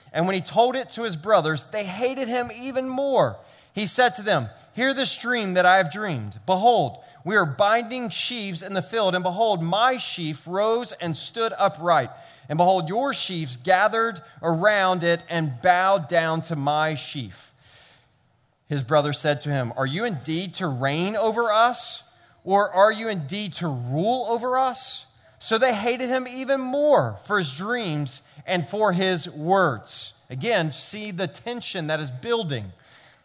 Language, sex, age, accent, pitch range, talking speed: English, male, 30-49, American, 160-240 Hz, 170 wpm